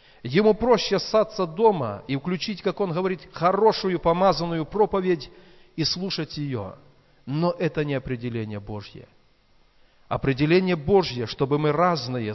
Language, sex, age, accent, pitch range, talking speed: Russian, male, 40-59, native, 125-170 Hz, 120 wpm